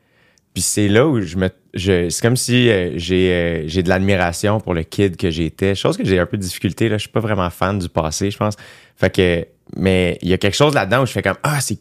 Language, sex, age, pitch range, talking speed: French, male, 20-39, 90-115 Hz, 270 wpm